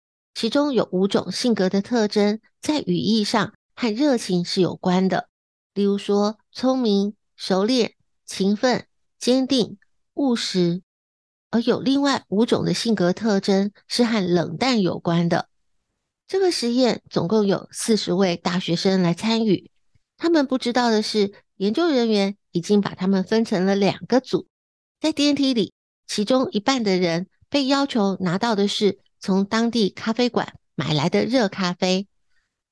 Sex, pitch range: female, 185-240 Hz